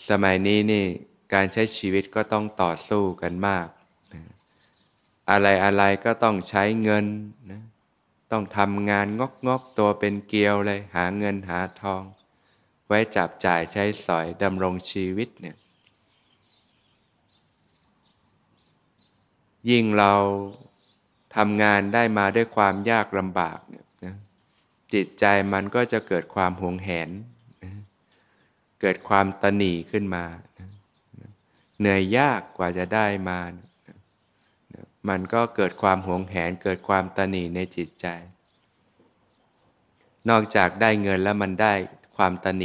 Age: 20-39